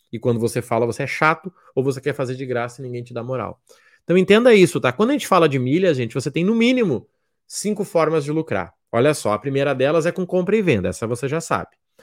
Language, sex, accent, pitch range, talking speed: Portuguese, male, Brazilian, 125-185 Hz, 255 wpm